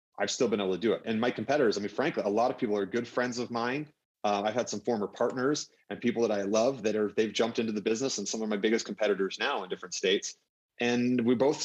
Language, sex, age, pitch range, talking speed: English, male, 30-49, 100-120 Hz, 275 wpm